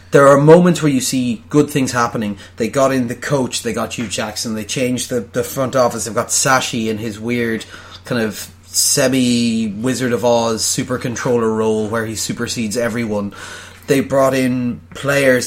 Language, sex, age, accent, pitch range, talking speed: English, male, 30-49, Irish, 110-135 Hz, 180 wpm